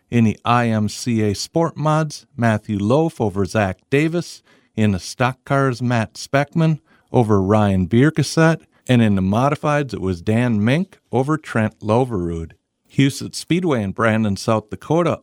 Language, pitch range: English, 105-135 Hz